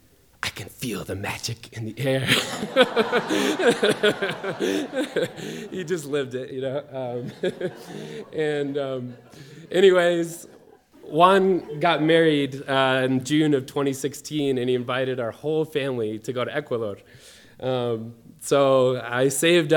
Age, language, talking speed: 20-39, English, 120 wpm